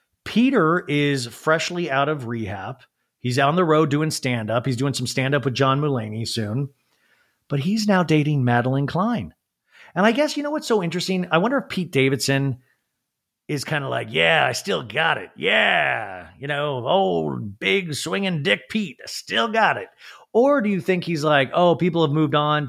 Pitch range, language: 130-205 Hz, English